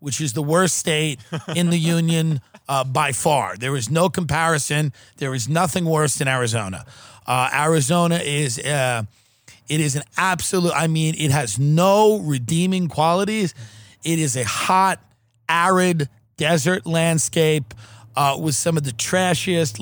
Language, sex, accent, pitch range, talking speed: English, male, American, 130-170 Hz, 150 wpm